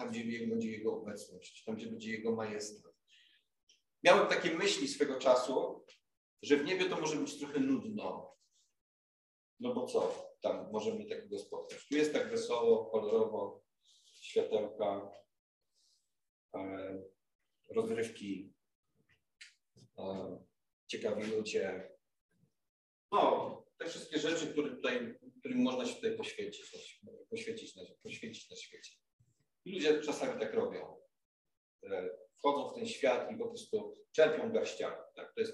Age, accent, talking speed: 40-59, native, 115 wpm